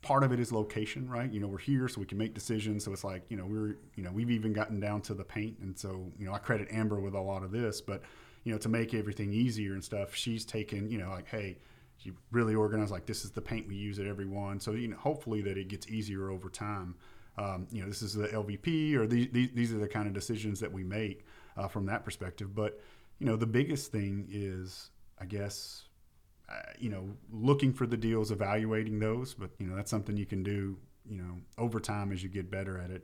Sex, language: male, English